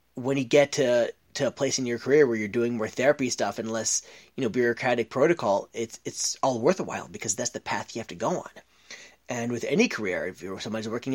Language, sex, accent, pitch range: English, male, American, 115-145 Hz